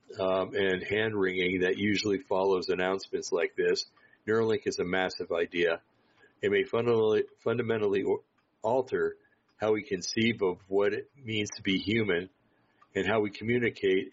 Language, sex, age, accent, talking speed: English, male, 50-69, American, 140 wpm